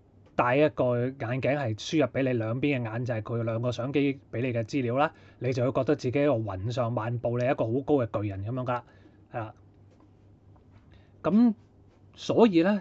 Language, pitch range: Chinese, 105-140 Hz